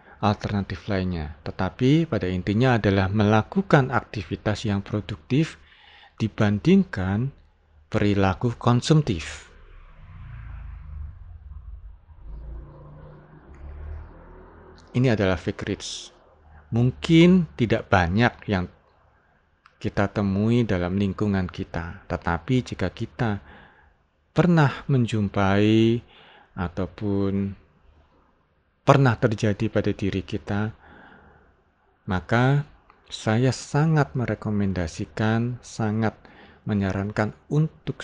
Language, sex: Indonesian, male